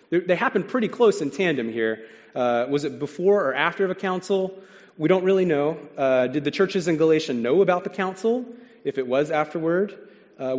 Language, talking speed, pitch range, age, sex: English, 195 wpm, 125-165 Hz, 30-49, male